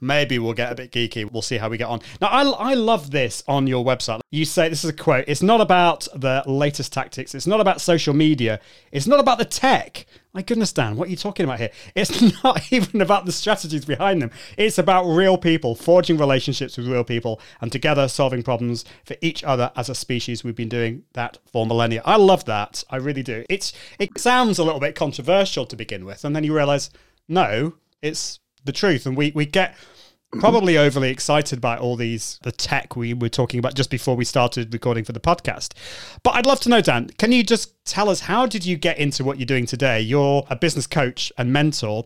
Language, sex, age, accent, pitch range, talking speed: English, male, 30-49, British, 125-170 Hz, 225 wpm